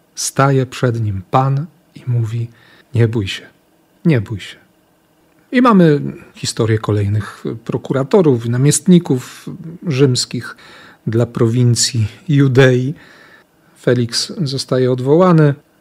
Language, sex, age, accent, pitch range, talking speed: Polish, male, 40-59, native, 115-155 Hz, 95 wpm